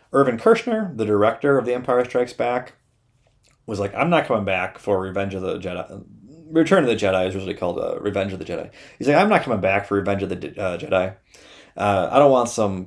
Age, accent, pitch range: 30-49, American, 100-140 Hz